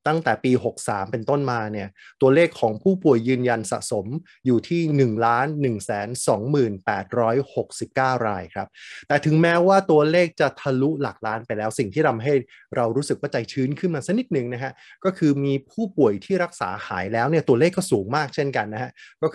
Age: 20-39